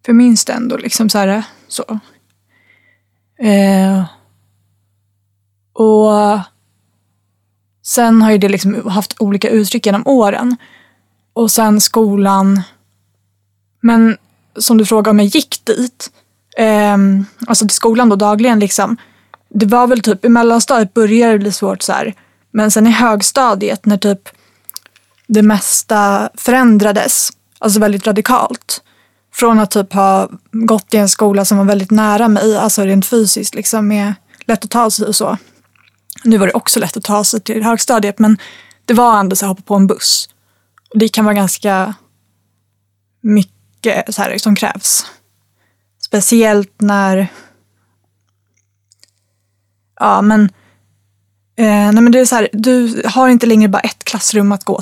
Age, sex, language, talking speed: 20-39, female, Swedish, 145 wpm